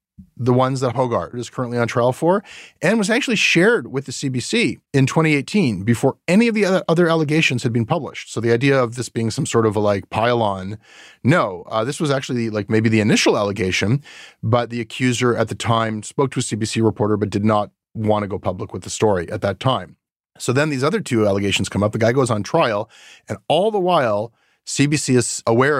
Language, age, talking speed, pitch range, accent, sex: English, 30-49, 220 wpm, 100-125 Hz, American, male